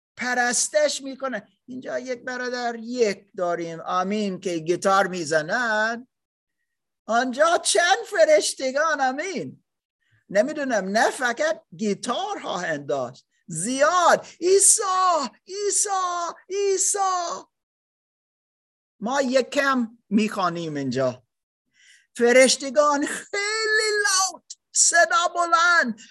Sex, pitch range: male, 210-340 Hz